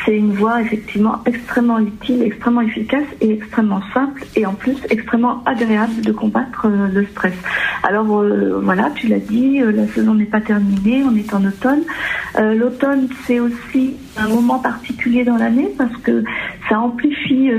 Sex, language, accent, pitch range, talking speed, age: female, French, French, 215-250 Hz, 165 wpm, 50-69